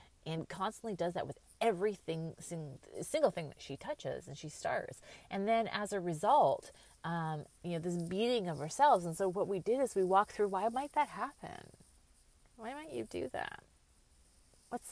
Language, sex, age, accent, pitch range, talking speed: English, female, 30-49, American, 140-195 Hz, 185 wpm